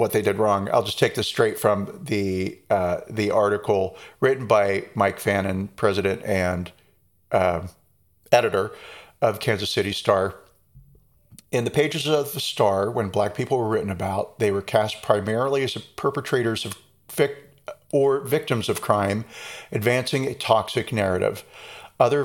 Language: English